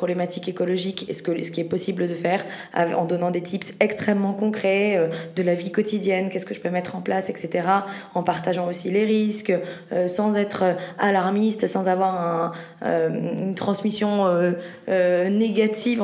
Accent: French